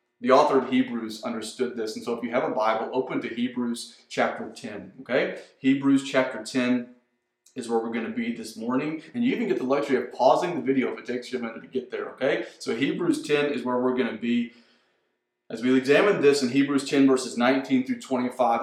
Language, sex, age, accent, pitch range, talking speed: English, male, 30-49, American, 120-145 Hz, 225 wpm